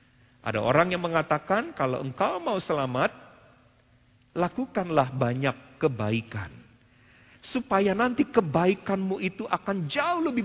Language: Indonesian